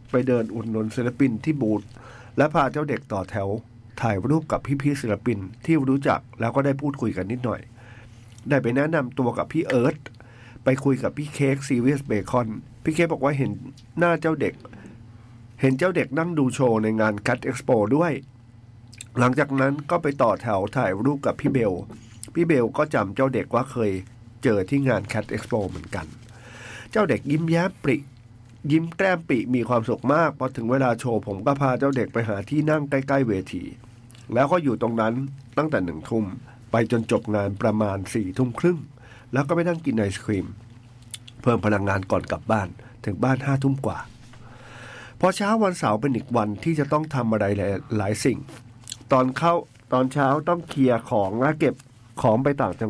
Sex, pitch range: male, 115-140 Hz